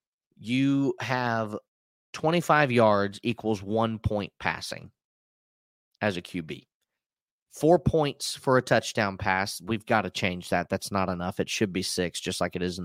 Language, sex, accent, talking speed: English, male, American, 160 wpm